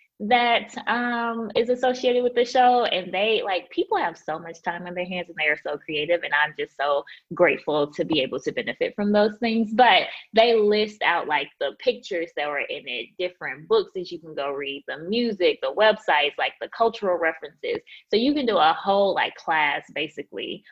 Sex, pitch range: female, 165-240 Hz